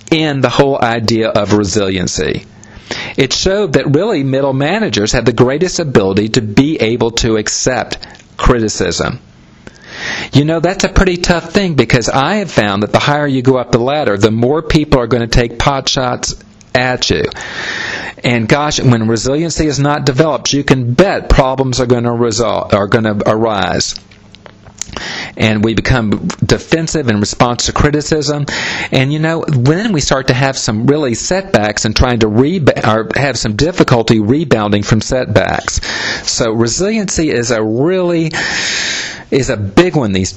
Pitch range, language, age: 110-150 Hz, English, 50-69